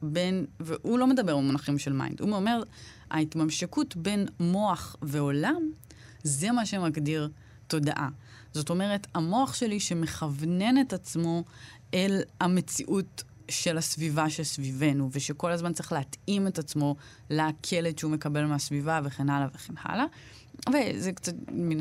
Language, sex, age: Hebrew, female, 20-39